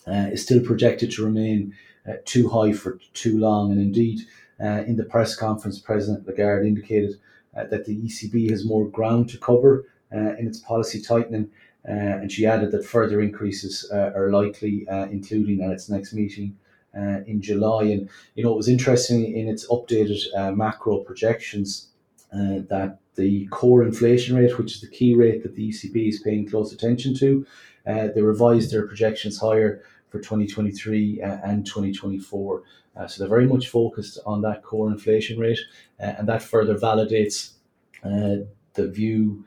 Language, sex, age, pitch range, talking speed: English, male, 30-49, 105-115 Hz, 180 wpm